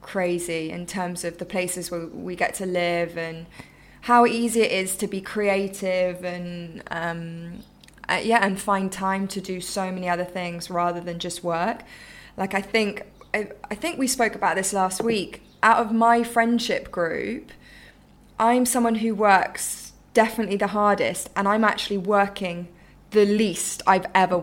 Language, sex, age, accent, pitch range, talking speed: English, female, 20-39, British, 180-205 Hz, 165 wpm